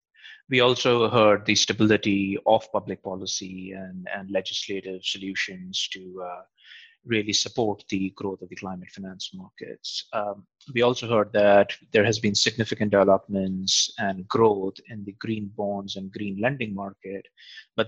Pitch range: 100-110 Hz